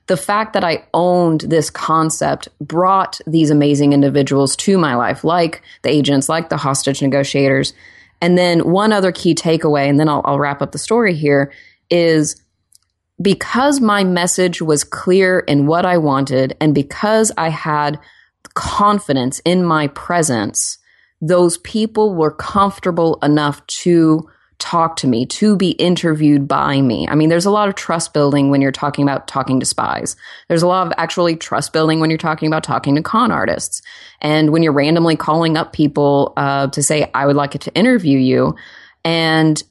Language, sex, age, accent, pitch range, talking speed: English, female, 30-49, American, 140-175 Hz, 175 wpm